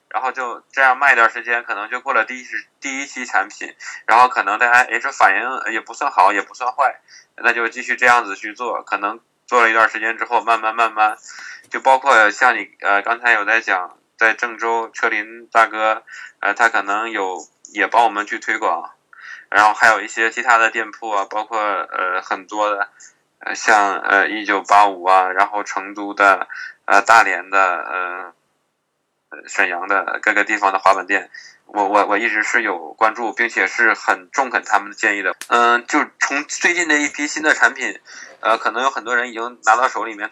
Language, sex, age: Chinese, male, 20-39